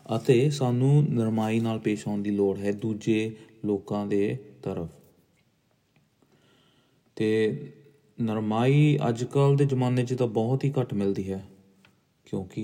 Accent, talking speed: Indian, 105 wpm